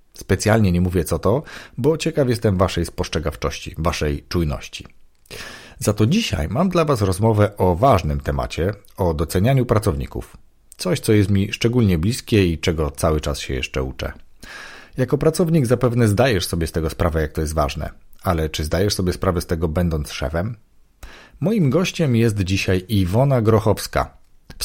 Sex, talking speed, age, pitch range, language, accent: male, 160 wpm, 40-59, 80-120 Hz, Polish, native